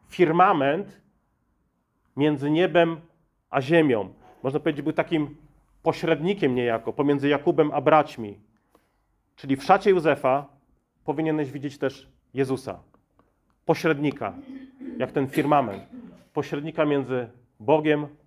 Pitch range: 130-160 Hz